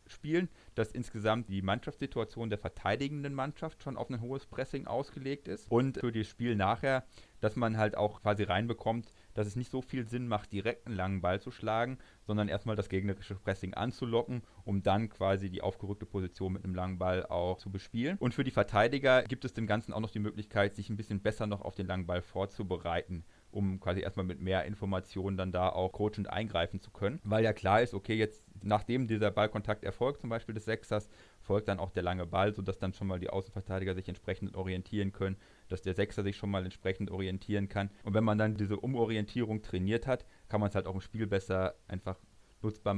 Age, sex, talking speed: 30-49, male, 210 wpm